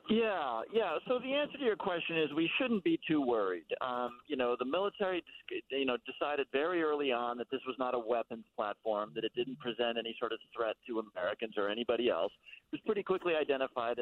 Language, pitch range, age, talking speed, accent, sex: English, 115-145 Hz, 50-69, 215 wpm, American, male